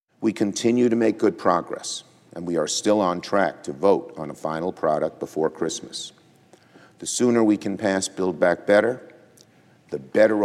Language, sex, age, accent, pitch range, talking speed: English, male, 50-69, American, 115-165 Hz, 170 wpm